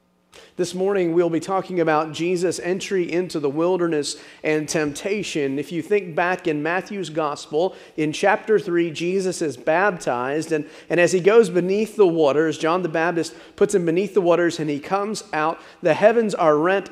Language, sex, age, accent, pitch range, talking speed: English, male, 40-59, American, 145-180 Hz, 175 wpm